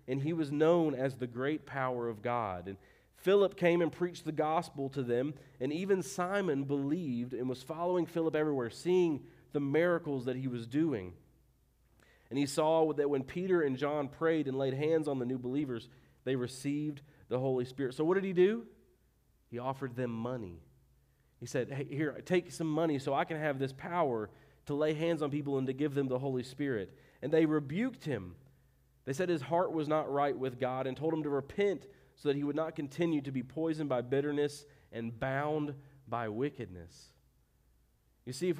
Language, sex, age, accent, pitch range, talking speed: English, male, 40-59, American, 130-160 Hz, 195 wpm